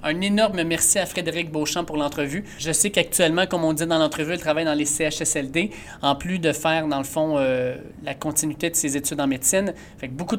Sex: male